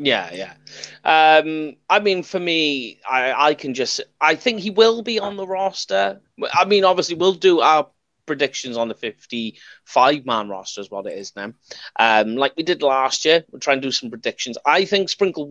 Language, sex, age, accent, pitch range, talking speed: English, male, 30-49, British, 120-165 Hz, 195 wpm